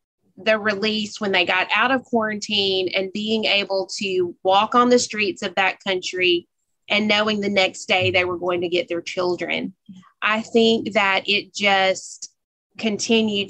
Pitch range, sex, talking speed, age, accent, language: 180-215 Hz, female, 165 wpm, 20-39, American, English